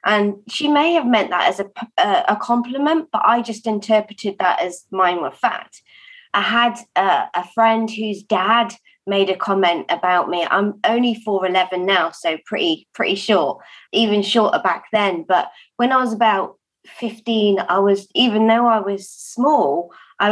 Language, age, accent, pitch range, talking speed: English, 20-39, British, 200-245 Hz, 175 wpm